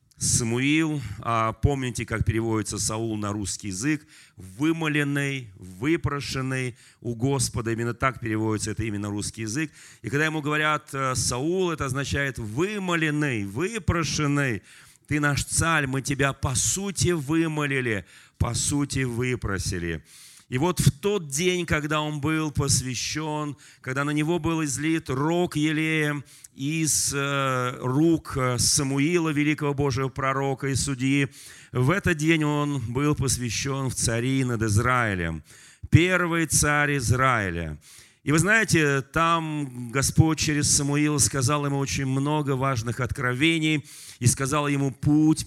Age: 40-59